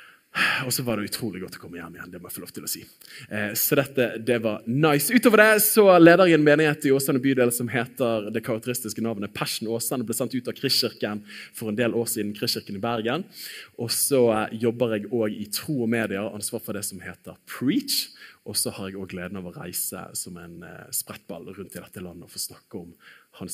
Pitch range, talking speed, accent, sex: 105-145 Hz, 225 wpm, Norwegian, male